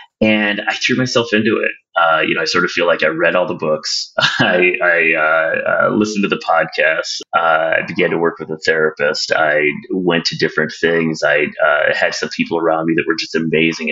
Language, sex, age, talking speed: English, male, 30-49, 220 wpm